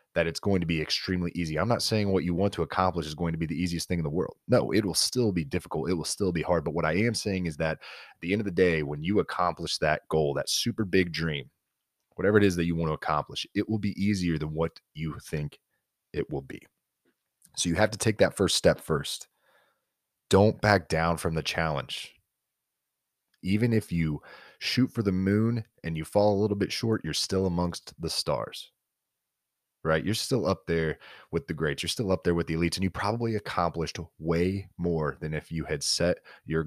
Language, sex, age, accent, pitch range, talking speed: English, male, 30-49, American, 80-105 Hz, 225 wpm